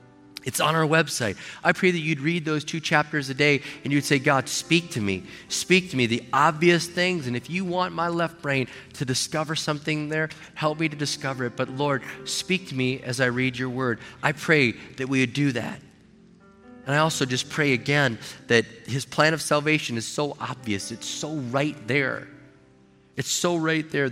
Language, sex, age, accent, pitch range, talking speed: English, male, 30-49, American, 130-180 Hz, 205 wpm